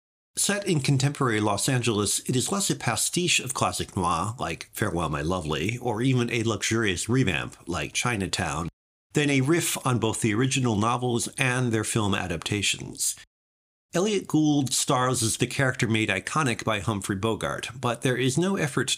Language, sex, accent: English, male, American